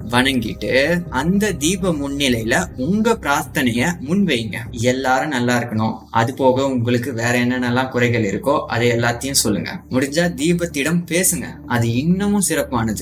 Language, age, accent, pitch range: Tamil, 20-39, native, 120-170 Hz